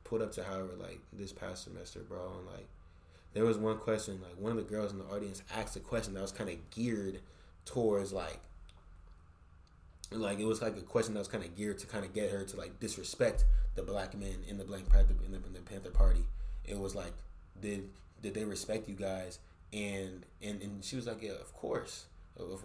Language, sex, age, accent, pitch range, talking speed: English, male, 20-39, American, 90-115 Hz, 215 wpm